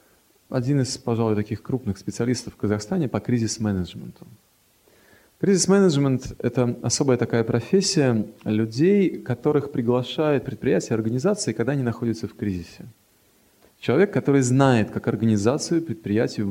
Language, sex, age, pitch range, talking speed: Russian, male, 30-49, 105-140 Hz, 115 wpm